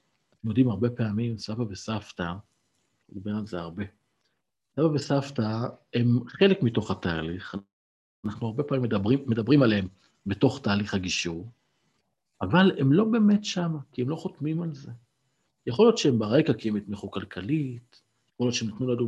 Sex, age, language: male, 50-69, Hebrew